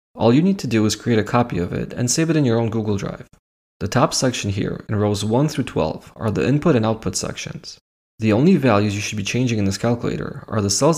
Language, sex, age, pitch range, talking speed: English, male, 20-39, 105-140 Hz, 255 wpm